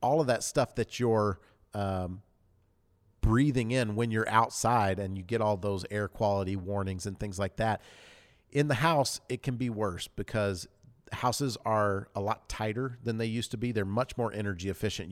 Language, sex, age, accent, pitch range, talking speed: English, male, 40-59, American, 95-115 Hz, 185 wpm